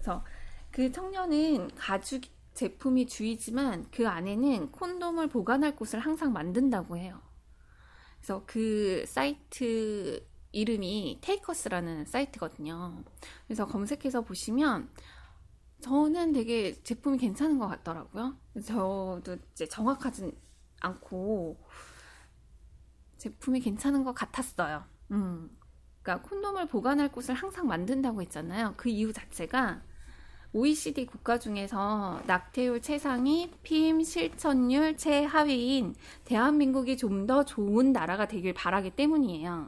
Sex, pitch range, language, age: female, 200-280 Hz, Korean, 20-39